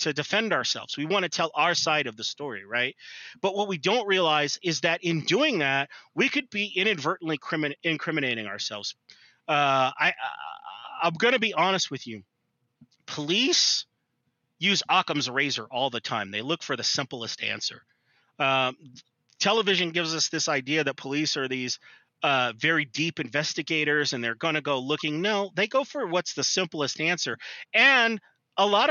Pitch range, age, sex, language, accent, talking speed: 135-195 Hz, 30-49, male, English, American, 175 wpm